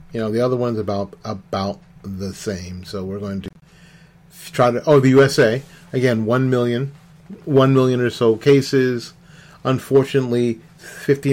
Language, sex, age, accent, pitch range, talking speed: English, male, 40-59, American, 115-160 Hz, 150 wpm